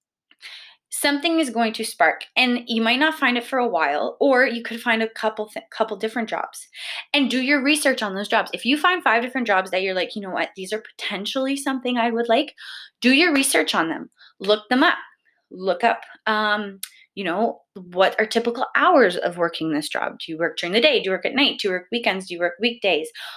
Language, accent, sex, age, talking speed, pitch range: English, American, female, 20-39, 230 wpm, 190-275 Hz